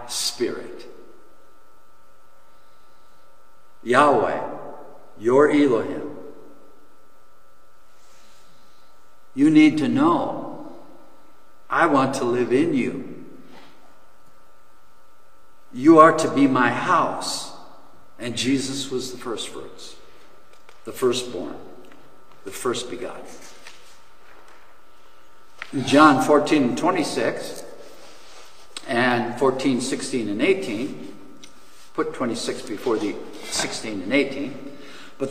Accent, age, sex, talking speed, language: American, 60-79, male, 85 wpm, English